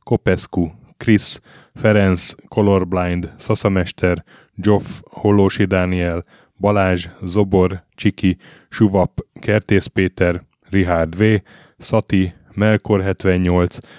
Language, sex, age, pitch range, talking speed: Hungarian, male, 10-29, 90-105 Hz, 75 wpm